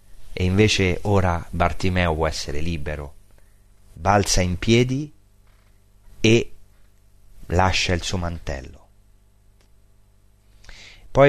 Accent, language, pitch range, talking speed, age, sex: native, Italian, 85-105 Hz, 85 wpm, 30-49, male